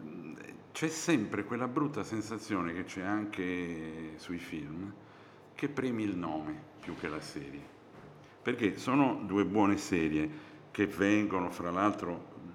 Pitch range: 80-100 Hz